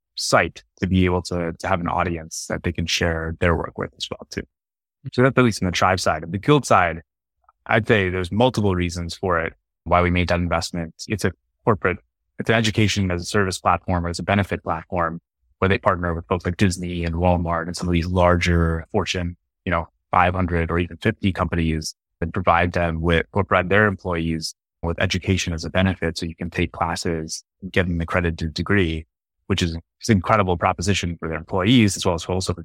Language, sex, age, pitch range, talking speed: English, male, 20-39, 85-95 Hz, 215 wpm